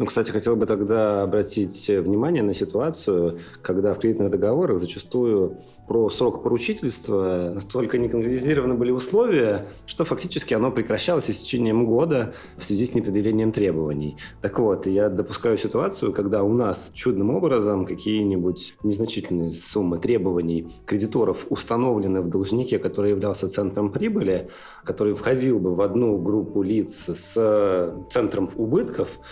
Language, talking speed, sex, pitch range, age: Russian, 130 wpm, male, 100-120 Hz, 30-49